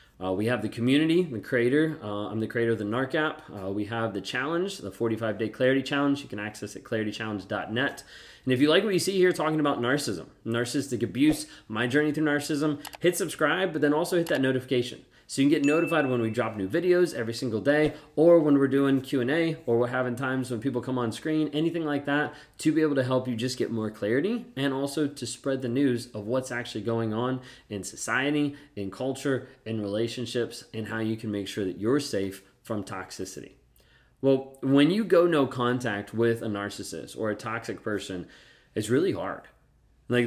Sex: male